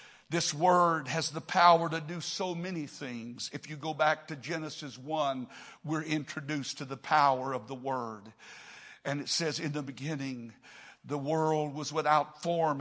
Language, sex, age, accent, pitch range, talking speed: English, male, 60-79, American, 155-215 Hz, 170 wpm